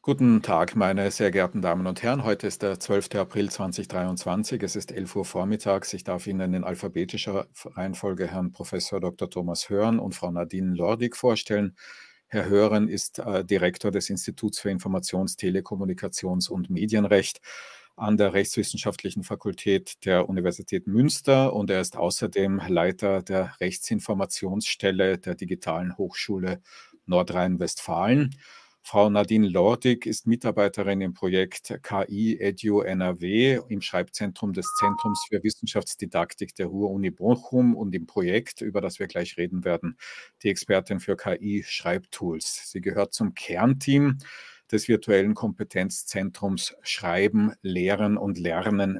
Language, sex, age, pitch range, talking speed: English, male, 50-69, 95-110 Hz, 130 wpm